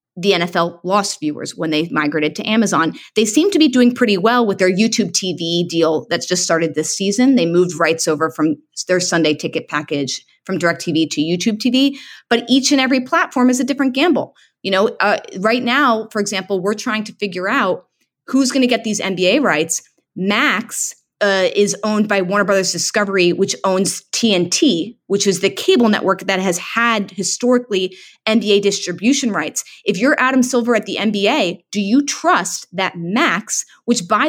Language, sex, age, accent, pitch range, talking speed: English, female, 30-49, American, 185-240 Hz, 180 wpm